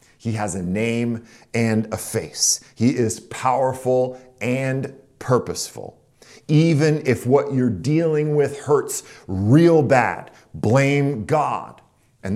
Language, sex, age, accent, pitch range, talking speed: English, male, 40-59, American, 110-145 Hz, 115 wpm